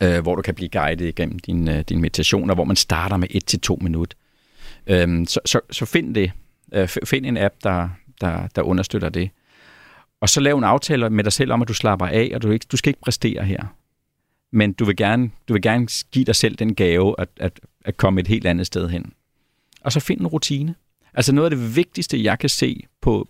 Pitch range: 95-125 Hz